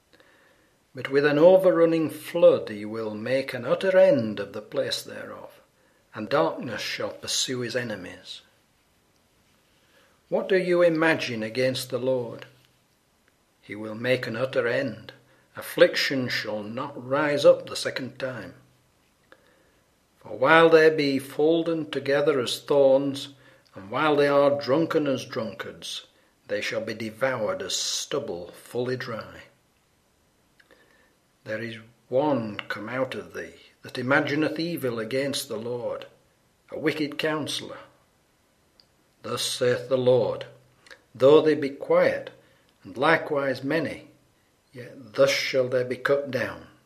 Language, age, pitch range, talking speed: English, 60-79, 125-160 Hz, 125 wpm